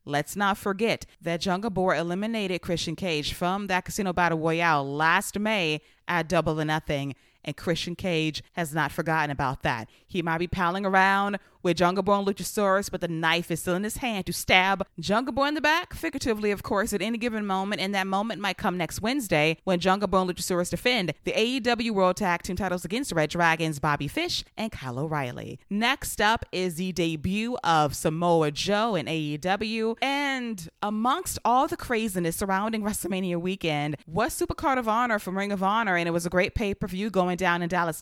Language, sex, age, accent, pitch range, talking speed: English, female, 20-39, American, 165-205 Hz, 195 wpm